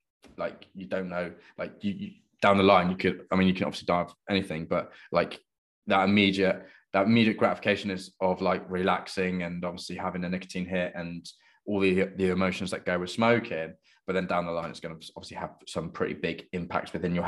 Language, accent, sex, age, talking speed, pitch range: English, British, male, 20-39, 215 wpm, 95-115 Hz